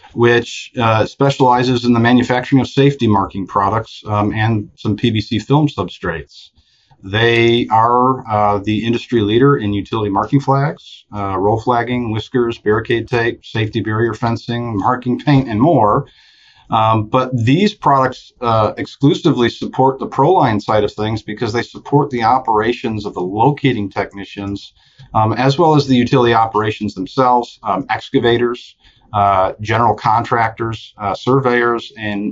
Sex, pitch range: male, 105-125 Hz